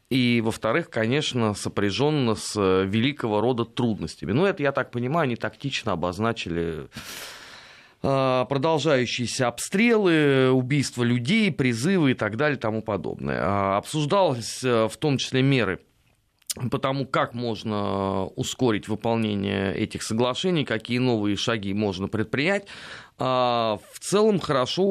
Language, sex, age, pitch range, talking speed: Russian, male, 20-39, 105-130 Hz, 115 wpm